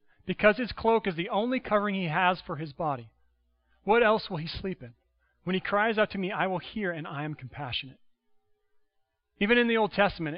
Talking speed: 210 wpm